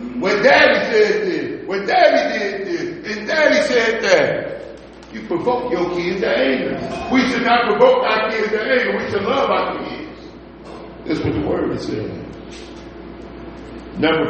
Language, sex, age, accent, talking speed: English, male, 60-79, American, 160 wpm